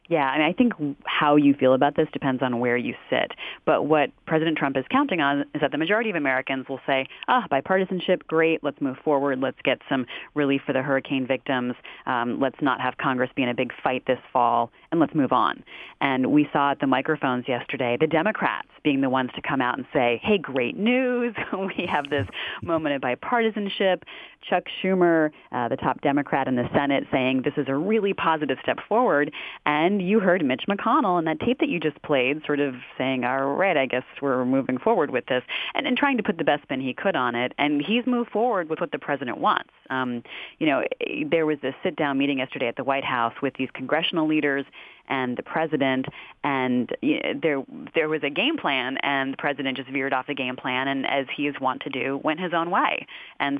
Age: 30-49